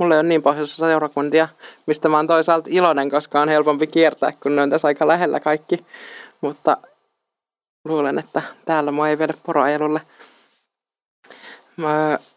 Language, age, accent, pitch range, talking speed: Finnish, 20-39, native, 140-160 Hz, 145 wpm